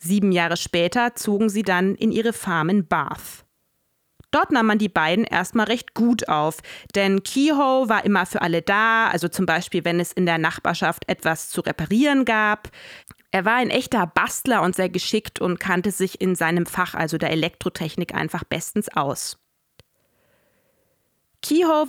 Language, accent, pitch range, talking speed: German, German, 180-230 Hz, 165 wpm